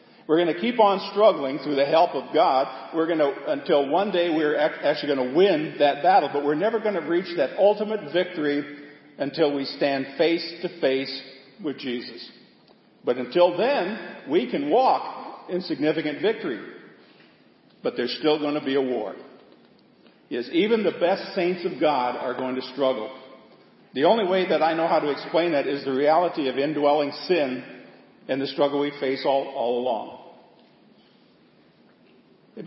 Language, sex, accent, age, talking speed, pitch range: English, male, American, 50-69, 165 wpm, 135-210 Hz